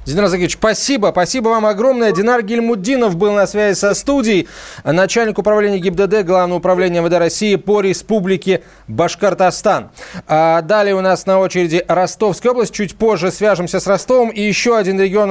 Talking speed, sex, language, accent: 155 wpm, male, Russian, native